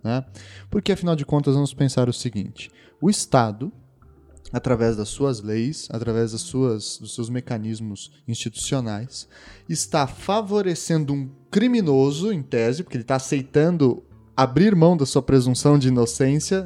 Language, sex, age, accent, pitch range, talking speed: Portuguese, male, 10-29, Brazilian, 125-180 Hz, 135 wpm